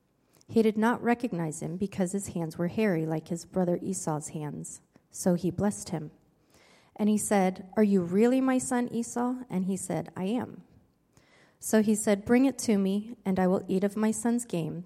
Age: 30-49